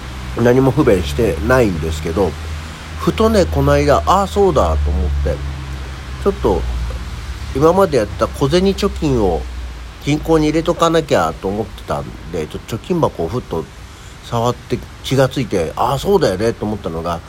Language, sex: Japanese, male